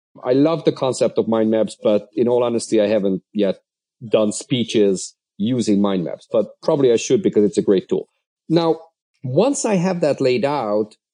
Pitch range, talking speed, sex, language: 110-160 Hz, 190 wpm, male, English